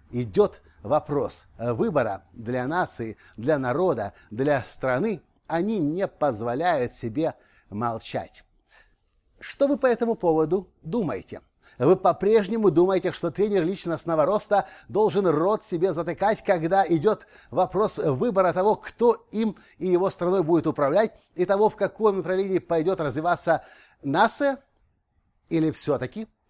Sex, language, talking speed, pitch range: male, Russian, 120 wpm, 140-200 Hz